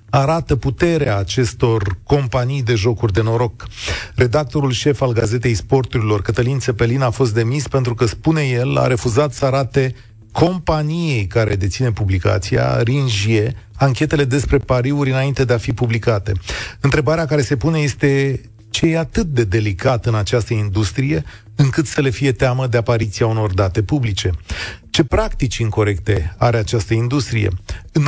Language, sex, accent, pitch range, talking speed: Romanian, male, native, 110-140 Hz, 145 wpm